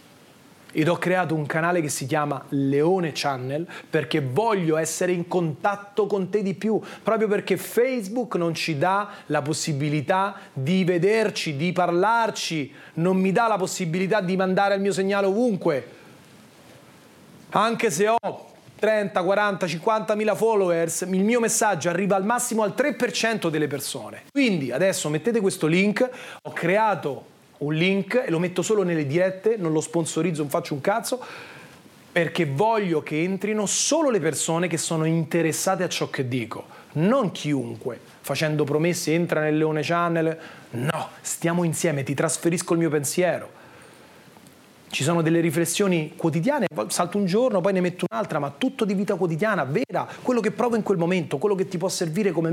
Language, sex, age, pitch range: Italian, male, 30-49, 160-205 Hz